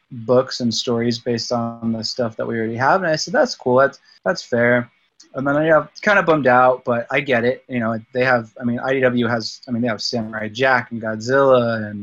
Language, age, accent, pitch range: English, 20-39, American, 115-130 Hz